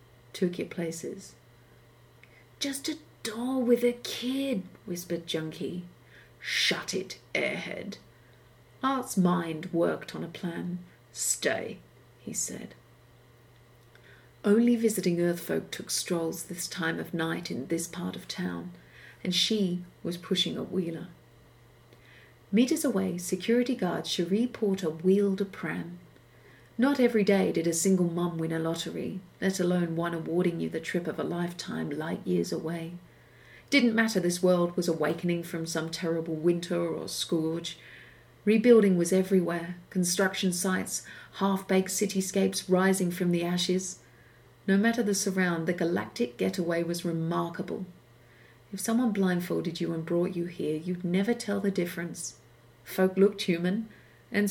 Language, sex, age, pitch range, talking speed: English, female, 40-59, 160-195 Hz, 135 wpm